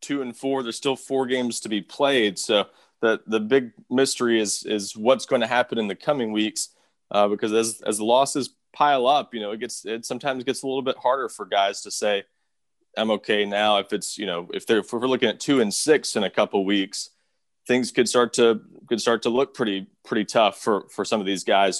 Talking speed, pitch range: 230 wpm, 105-125 Hz